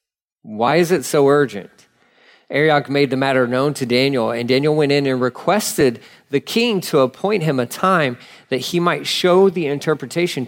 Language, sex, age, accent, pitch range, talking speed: English, male, 40-59, American, 120-150 Hz, 180 wpm